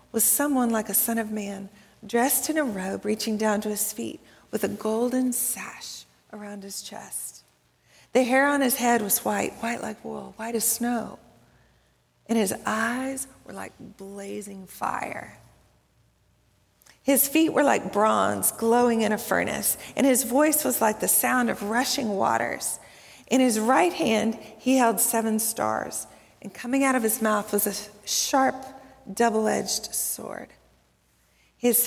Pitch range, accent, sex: 210-265 Hz, American, female